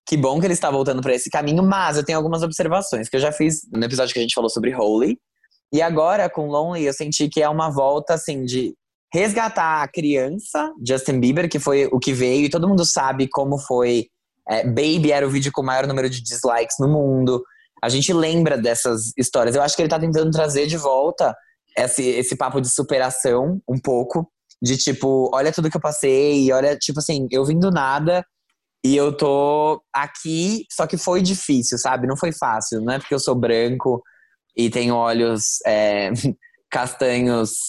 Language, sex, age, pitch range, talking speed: Portuguese, male, 20-39, 120-155 Hz, 195 wpm